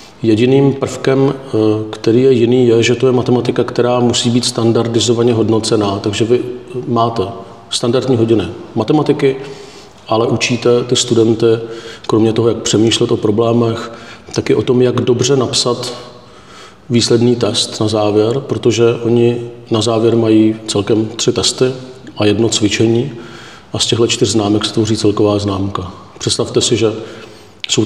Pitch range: 105-120 Hz